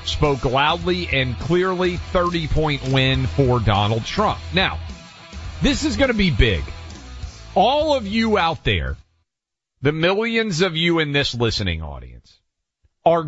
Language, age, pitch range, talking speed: English, 40-59, 115-185 Hz, 135 wpm